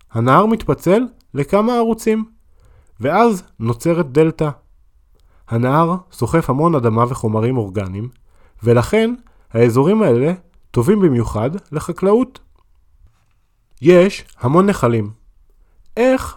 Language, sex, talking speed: Hebrew, male, 85 wpm